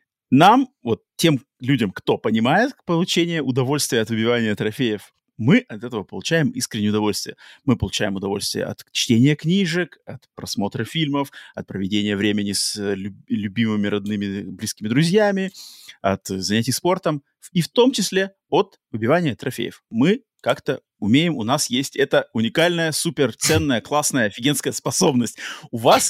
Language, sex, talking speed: Russian, male, 135 wpm